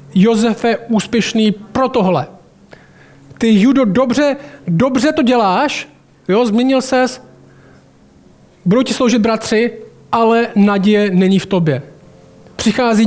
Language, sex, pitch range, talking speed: Czech, male, 180-225 Hz, 110 wpm